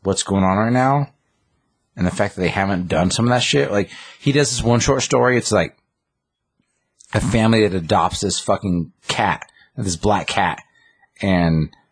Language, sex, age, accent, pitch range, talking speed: English, male, 30-49, American, 90-105 Hz, 180 wpm